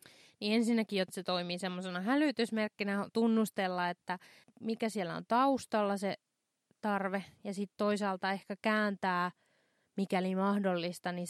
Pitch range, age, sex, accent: 180-215 Hz, 20-39, female, native